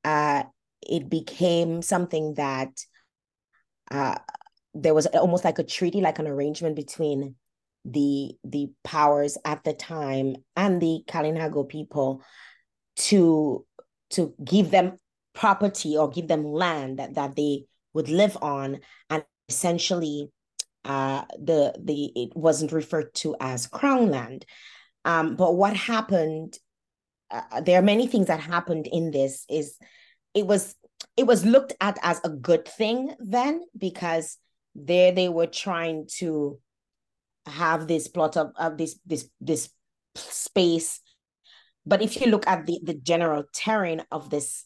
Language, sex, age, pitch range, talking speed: English, female, 30-49, 145-180 Hz, 140 wpm